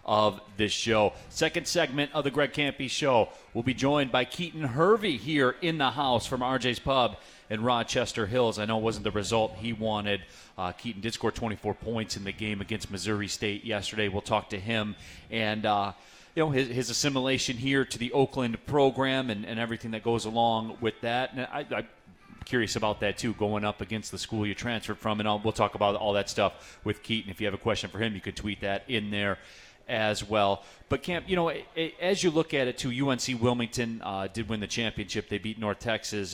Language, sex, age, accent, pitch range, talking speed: English, male, 40-59, American, 100-125 Hz, 220 wpm